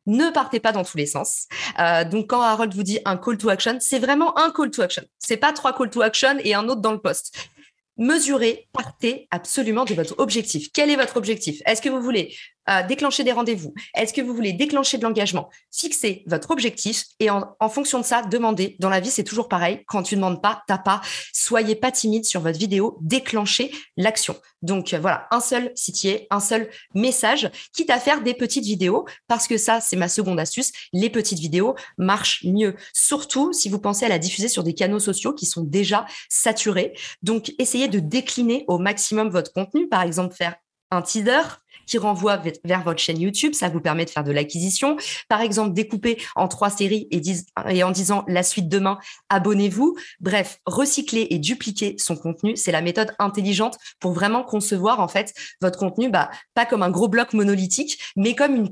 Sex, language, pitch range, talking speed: female, French, 185-245 Hz, 210 wpm